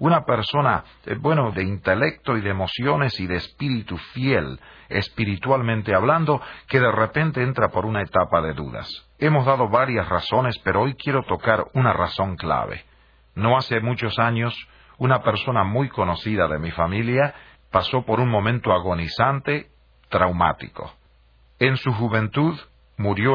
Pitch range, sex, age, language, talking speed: 90-130 Hz, male, 40-59, Spanish, 140 wpm